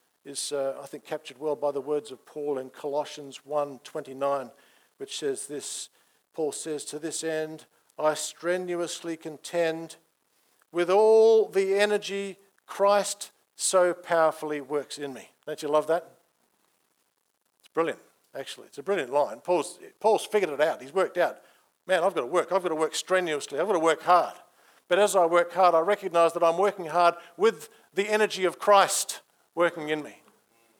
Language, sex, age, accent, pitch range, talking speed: English, male, 50-69, Australian, 145-180 Hz, 170 wpm